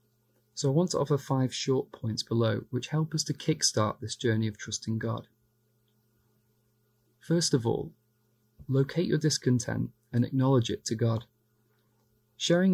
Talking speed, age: 145 wpm, 30-49